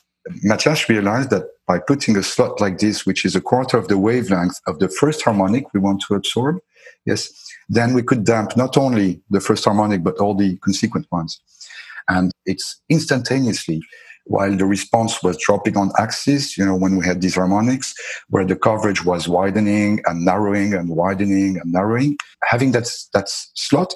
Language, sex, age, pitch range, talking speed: English, male, 50-69, 95-115 Hz, 180 wpm